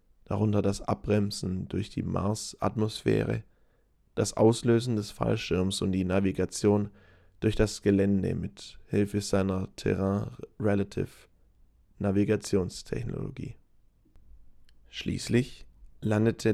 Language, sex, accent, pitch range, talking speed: English, male, German, 95-110 Hz, 80 wpm